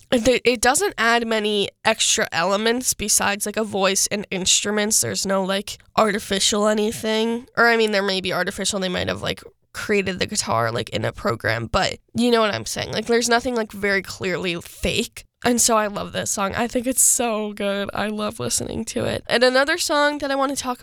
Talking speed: 205 wpm